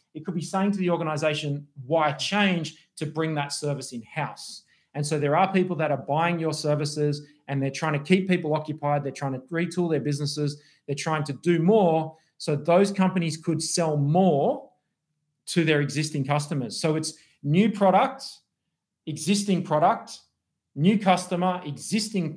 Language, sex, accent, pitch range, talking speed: English, male, Australian, 145-180 Hz, 165 wpm